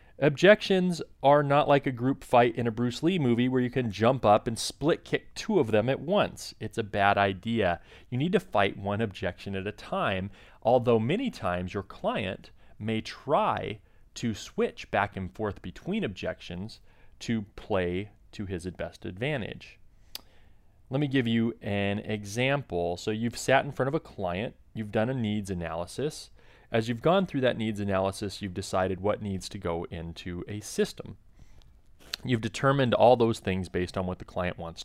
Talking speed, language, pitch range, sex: 180 wpm, English, 95-130 Hz, male